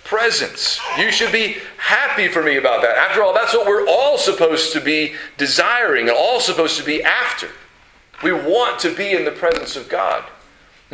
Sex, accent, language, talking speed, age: male, American, English, 190 wpm, 40-59